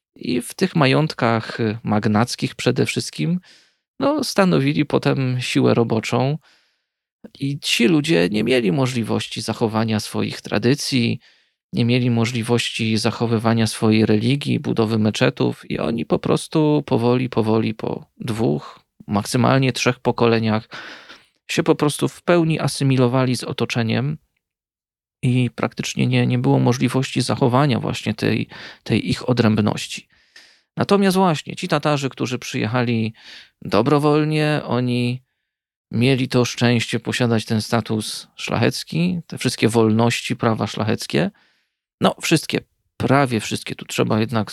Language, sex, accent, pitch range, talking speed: Polish, male, native, 115-140 Hz, 115 wpm